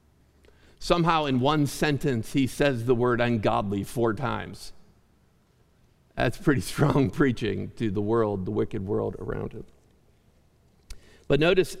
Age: 50-69